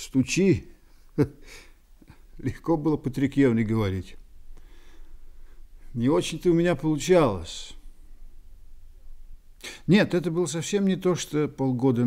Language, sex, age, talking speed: Russian, male, 50-69, 90 wpm